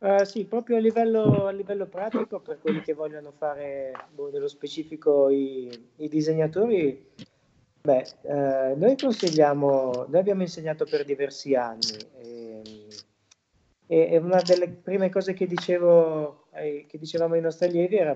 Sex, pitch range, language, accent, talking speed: male, 140-180 Hz, Italian, native, 140 wpm